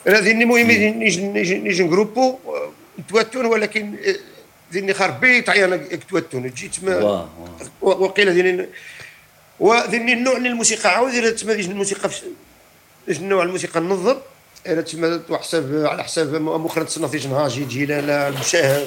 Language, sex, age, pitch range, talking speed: Dutch, male, 50-69, 145-195 Hz, 120 wpm